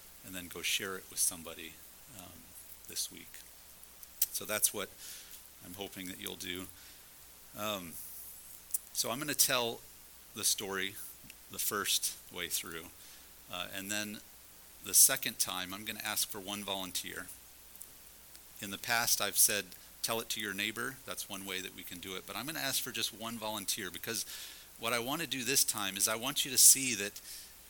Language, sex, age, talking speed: English, male, 40-59, 185 wpm